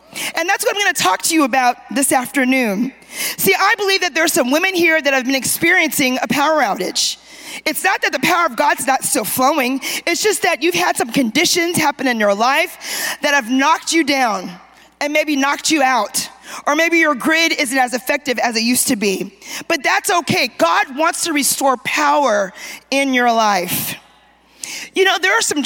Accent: American